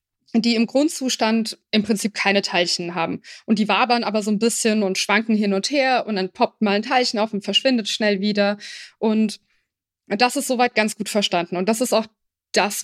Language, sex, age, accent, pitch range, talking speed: German, female, 20-39, German, 200-245 Hz, 200 wpm